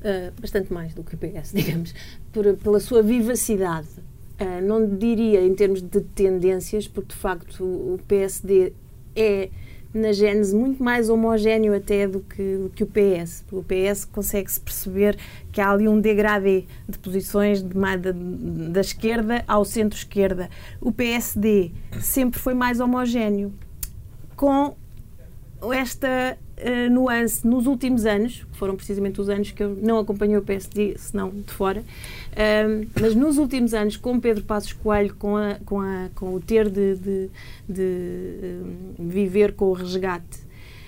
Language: Portuguese